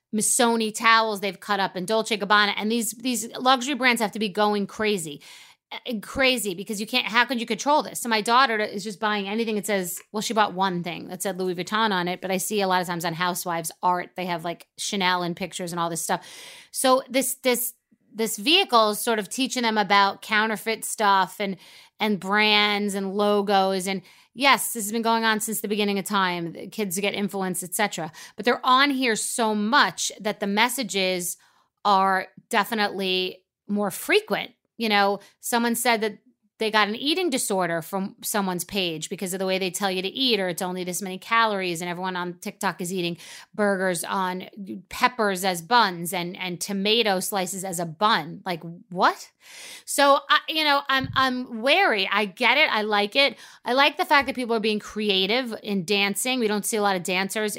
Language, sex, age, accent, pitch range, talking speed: English, female, 30-49, American, 190-230 Hz, 200 wpm